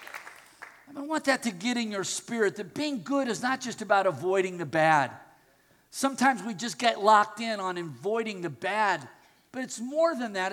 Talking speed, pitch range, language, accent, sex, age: 190 wpm, 210-275 Hz, English, American, male, 50-69